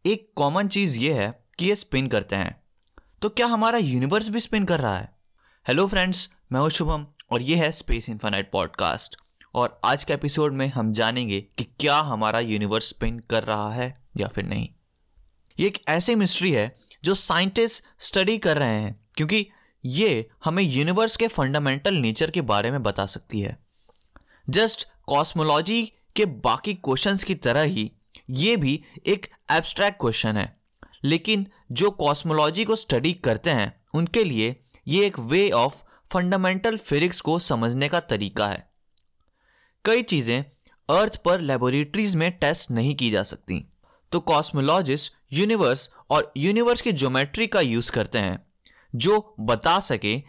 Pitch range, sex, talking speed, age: 120-195 Hz, male, 155 wpm, 20-39